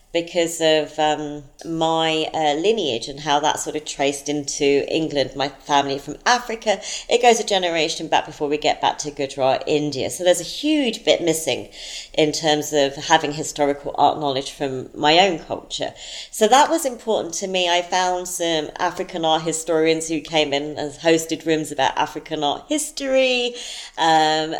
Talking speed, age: 170 wpm, 40-59